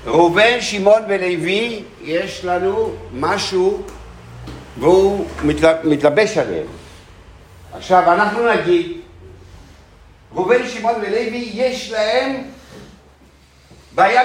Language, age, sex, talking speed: Hebrew, 60-79, male, 75 wpm